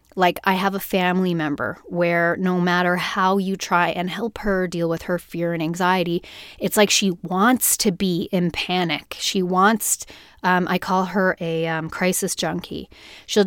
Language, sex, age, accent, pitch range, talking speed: English, female, 30-49, American, 175-200 Hz, 180 wpm